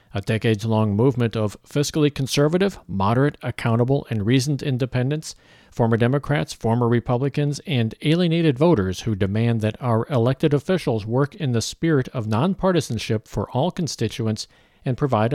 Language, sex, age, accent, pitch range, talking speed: English, male, 50-69, American, 110-145 Hz, 135 wpm